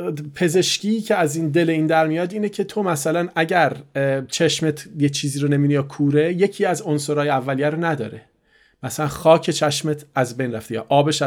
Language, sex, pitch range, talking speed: Persian, male, 140-180 Hz, 175 wpm